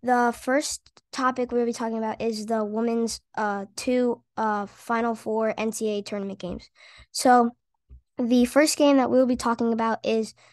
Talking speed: 165 wpm